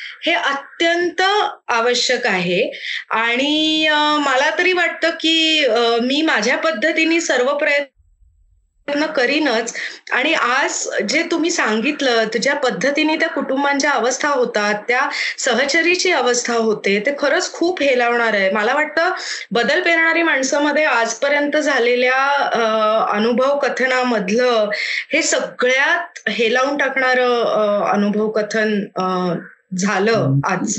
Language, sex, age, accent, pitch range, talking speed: Marathi, female, 20-39, native, 230-295 Hz, 105 wpm